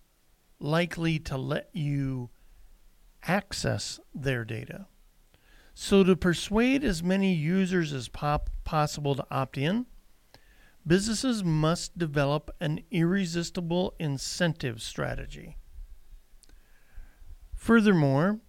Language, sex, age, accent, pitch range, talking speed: English, male, 50-69, American, 135-180 Hz, 85 wpm